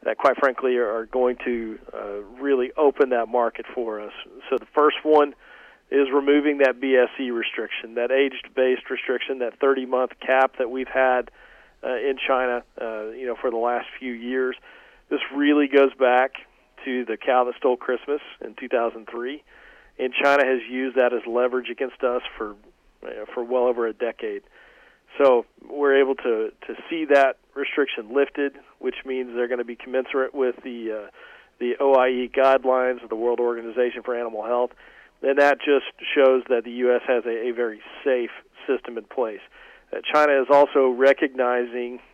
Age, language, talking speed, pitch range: 40-59, English, 170 wpm, 120-135 Hz